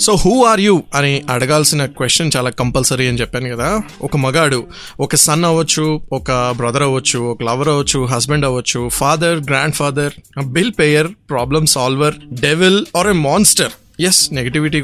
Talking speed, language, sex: 155 wpm, Telugu, male